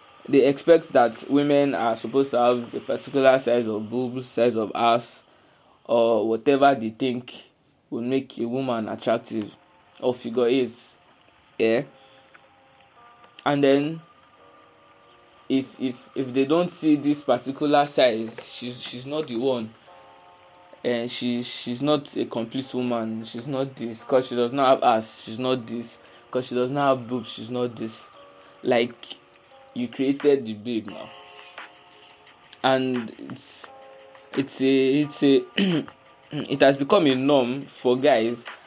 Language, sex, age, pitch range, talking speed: English, male, 20-39, 120-145 Hz, 145 wpm